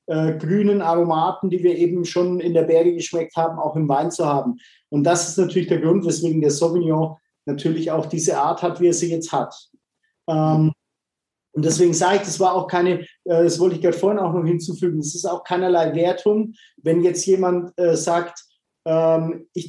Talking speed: 185 wpm